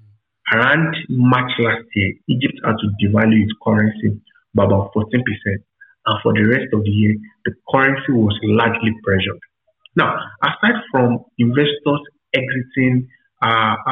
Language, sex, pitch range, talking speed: English, male, 105-125 Hz, 135 wpm